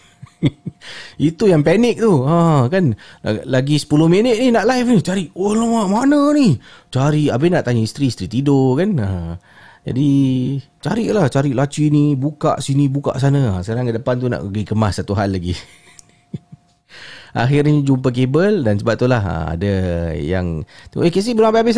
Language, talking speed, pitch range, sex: Malay, 165 wpm, 105-155 Hz, male